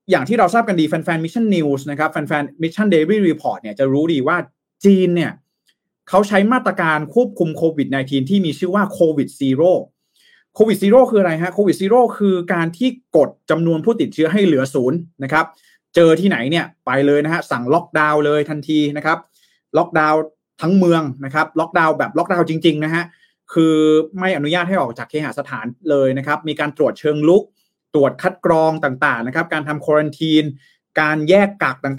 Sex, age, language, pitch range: male, 30-49, Thai, 145-190 Hz